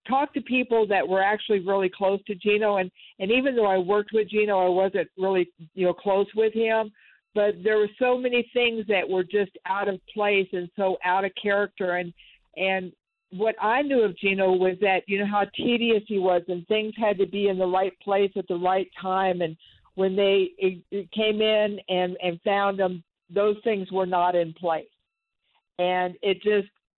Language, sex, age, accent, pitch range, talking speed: English, female, 50-69, American, 180-205 Hz, 200 wpm